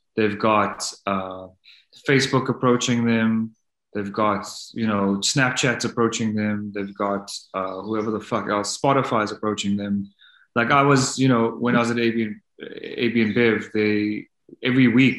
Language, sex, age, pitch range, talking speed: English, male, 20-39, 105-135 Hz, 155 wpm